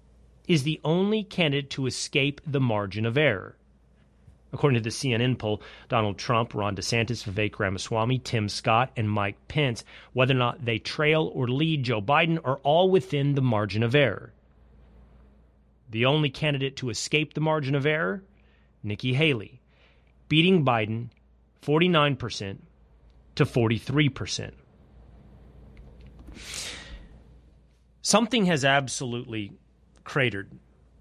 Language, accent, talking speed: English, American, 120 wpm